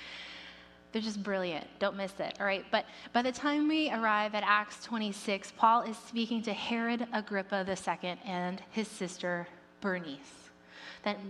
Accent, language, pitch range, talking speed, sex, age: American, English, 175-220 Hz, 155 wpm, female, 20-39